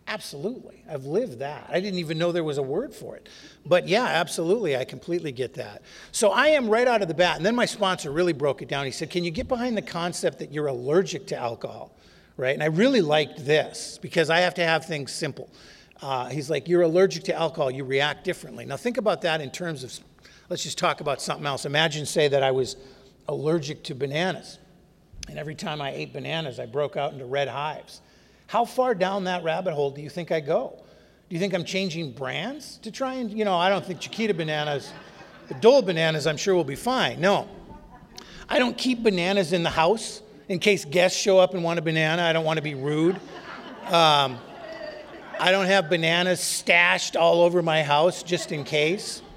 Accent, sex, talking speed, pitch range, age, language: American, male, 215 wpm, 150-185 Hz, 50-69, English